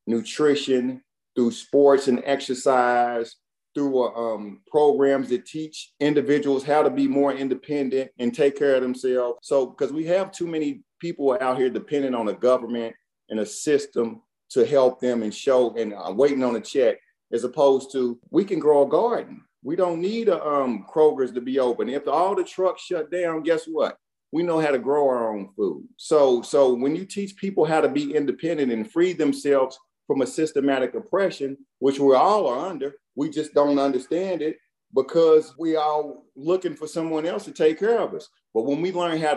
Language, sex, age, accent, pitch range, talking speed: English, male, 40-59, American, 125-155 Hz, 190 wpm